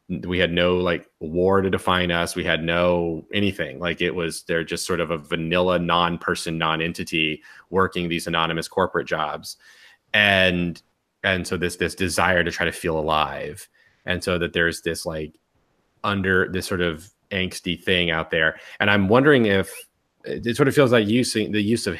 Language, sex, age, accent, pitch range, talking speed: English, male, 30-49, American, 85-100 Hz, 180 wpm